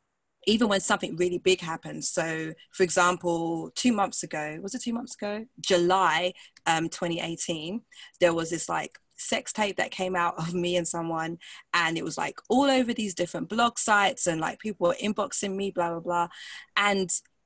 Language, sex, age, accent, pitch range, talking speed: English, female, 20-39, British, 170-210 Hz, 180 wpm